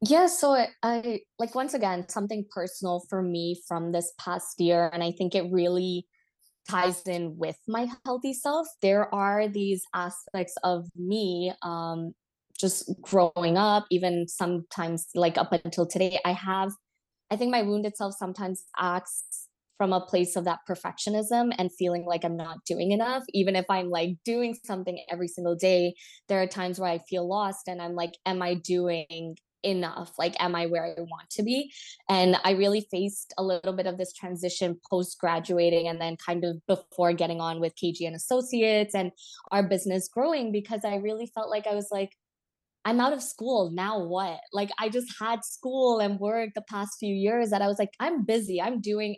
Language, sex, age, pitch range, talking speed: English, female, 20-39, 175-210 Hz, 185 wpm